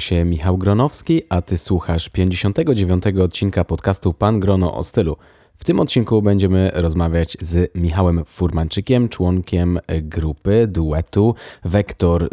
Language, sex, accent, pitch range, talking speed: Polish, male, native, 85-100 Hz, 115 wpm